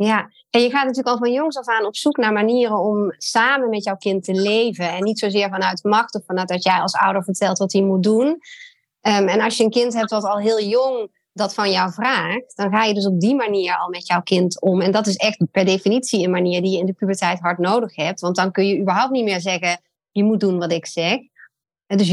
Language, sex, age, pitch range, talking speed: Dutch, female, 30-49, 180-220 Hz, 255 wpm